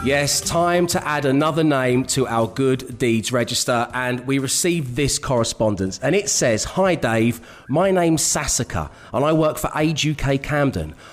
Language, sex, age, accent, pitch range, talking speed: English, male, 30-49, British, 130-170 Hz, 165 wpm